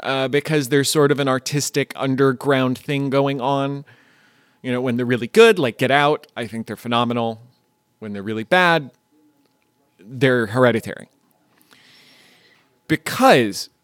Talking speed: 135 wpm